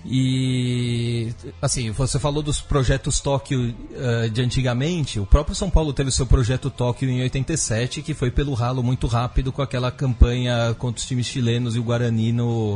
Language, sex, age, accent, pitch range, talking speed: Portuguese, male, 30-49, Brazilian, 115-140 Hz, 180 wpm